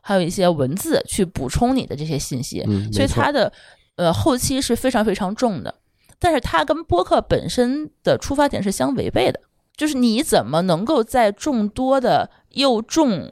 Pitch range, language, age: 175-255 Hz, Chinese, 20-39